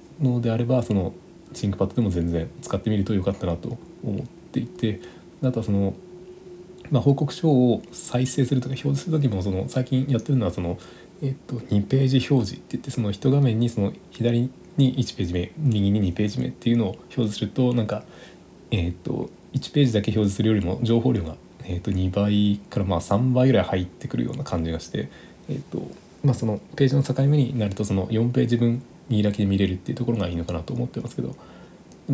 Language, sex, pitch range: Japanese, male, 100-130 Hz